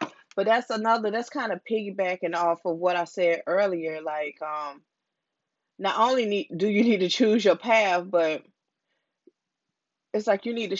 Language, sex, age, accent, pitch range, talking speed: English, female, 20-39, American, 170-220 Hz, 170 wpm